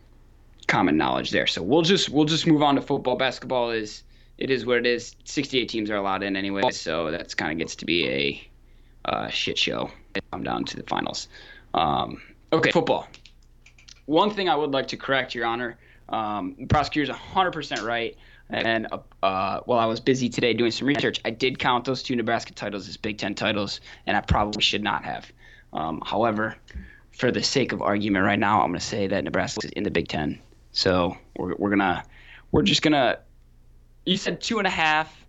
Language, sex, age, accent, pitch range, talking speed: English, male, 20-39, American, 85-140 Hz, 200 wpm